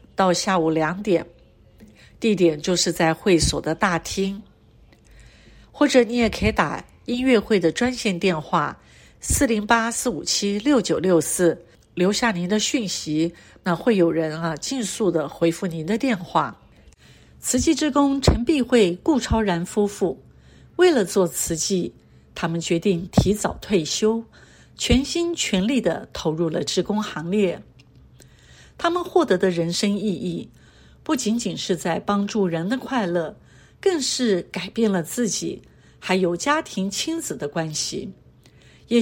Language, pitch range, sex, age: Chinese, 170-235 Hz, female, 60-79